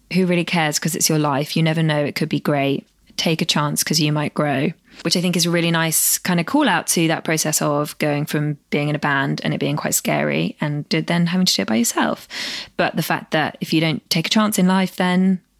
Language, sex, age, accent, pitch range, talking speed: English, female, 20-39, British, 155-200 Hz, 260 wpm